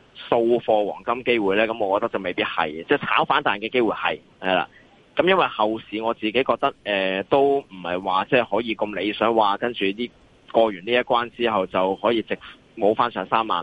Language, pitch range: Chinese, 100-125 Hz